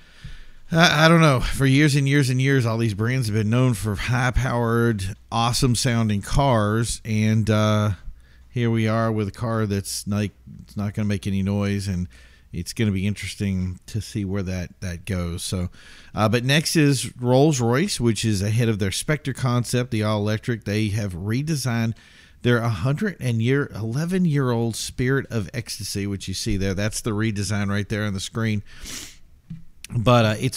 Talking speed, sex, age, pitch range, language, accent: 175 wpm, male, 50-69, 100-125 Hz, English, American